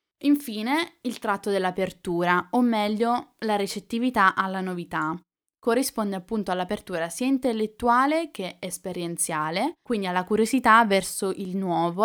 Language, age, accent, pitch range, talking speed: Italian, 10-29, native, 180-230 Hz, 115 wpm